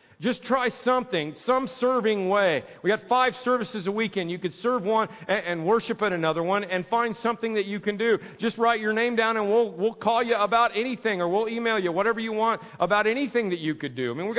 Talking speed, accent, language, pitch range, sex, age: 235 wpm, American, English, 175-230 Hz, male, 40-59